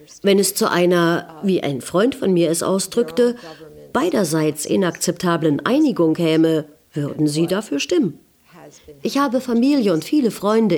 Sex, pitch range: female, 155-215 Hz